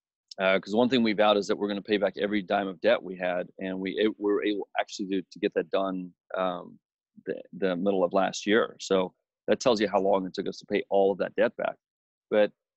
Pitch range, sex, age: 95-105 Hz, male, 30-49